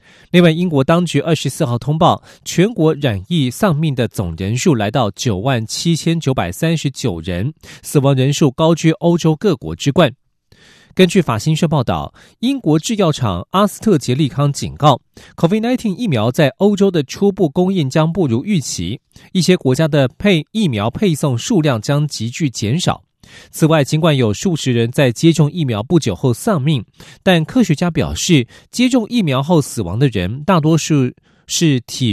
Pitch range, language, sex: 130-175 Hz, Chinese, male